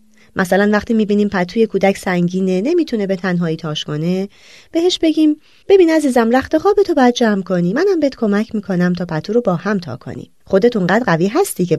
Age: 30-49